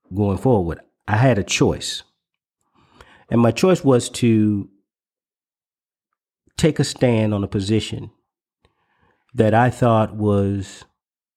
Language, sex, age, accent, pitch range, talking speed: English, male, 40-59, American, 100-115 Hz, 110 wpm